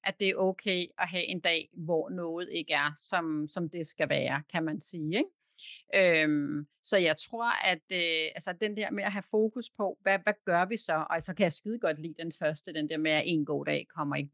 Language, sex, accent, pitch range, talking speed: Danish, female, native, 165-210 Hz, 245 wpm